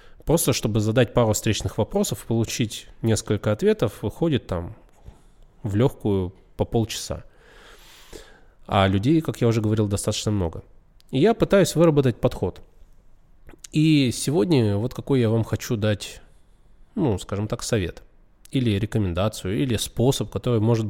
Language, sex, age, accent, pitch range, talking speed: Russian, male, 20-39, native, 105-140 Hz, 130 wpm